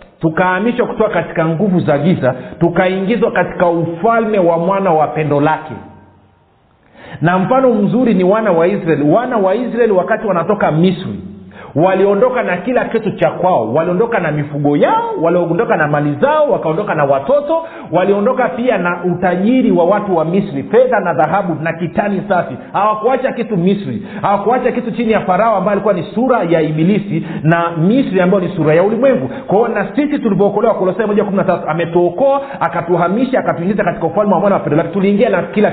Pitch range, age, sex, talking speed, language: 160-215 Hz, 50-69, male, 165 wpm, Swahili